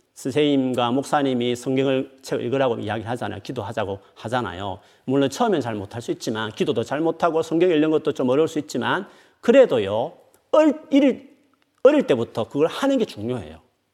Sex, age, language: male, 40-59, Korean